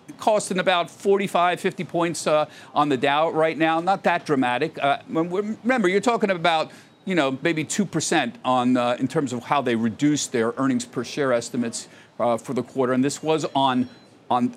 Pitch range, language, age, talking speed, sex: 135-205 Hz, English, 50-69, 190 wpm, male